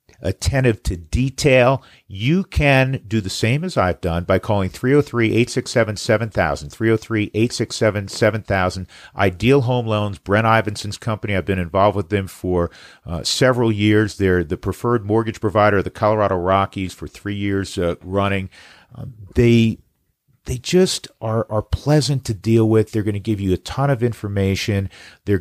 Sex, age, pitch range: male, 50-69, 95-115 Hz